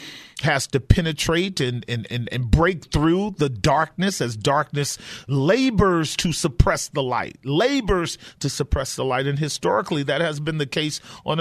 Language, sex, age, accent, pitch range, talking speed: English, male, 40-59, American, 140-185 Hz, 165 wpm